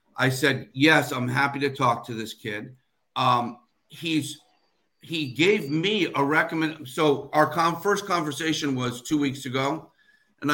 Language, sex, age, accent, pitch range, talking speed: English, male, 50-69, American, 130-160 Hz, 155 wpm